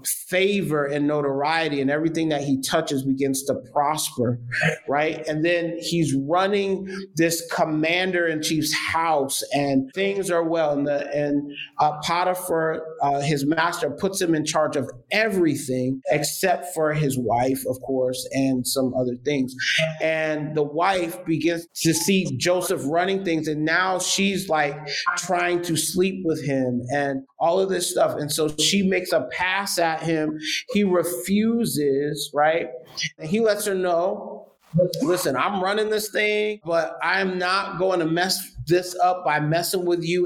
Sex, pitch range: male, 145-180 Hz